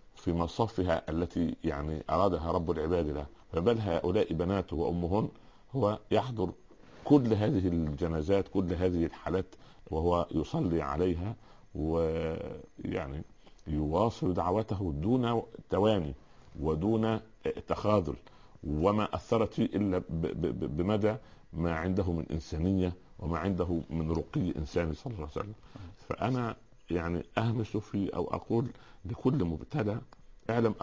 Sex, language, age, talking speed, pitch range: male, Arabic, 50-69, 110 wpm, 80-105 Hz